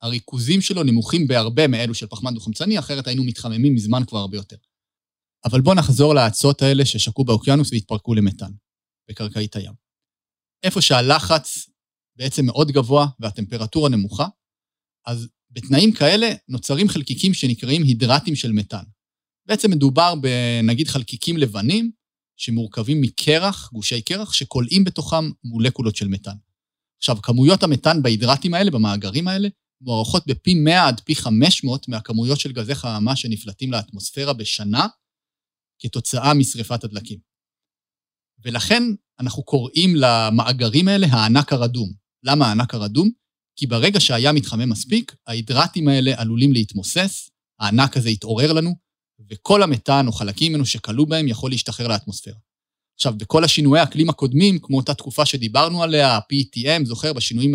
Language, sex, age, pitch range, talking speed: Hebrew, male, 30-49, 115-150 Hz, 130 wpm